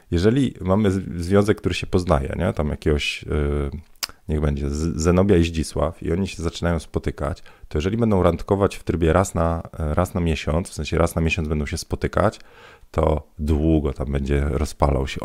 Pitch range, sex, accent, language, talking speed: 80-95 Hz, male, native, Polish, 175 wpm